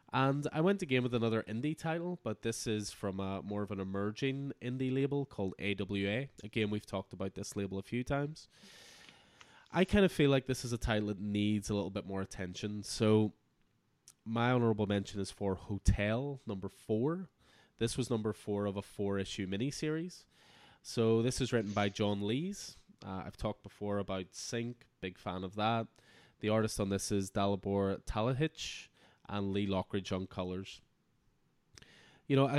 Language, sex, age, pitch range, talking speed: English, male, 20-39, 100-120 Hz, 175 wpm